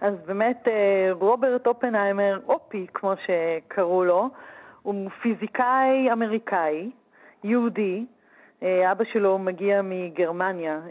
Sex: female